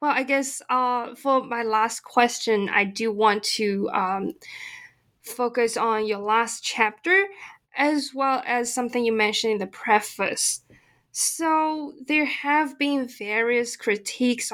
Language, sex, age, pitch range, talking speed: English, female, 20-39, 215-275 Hz, 135 wpm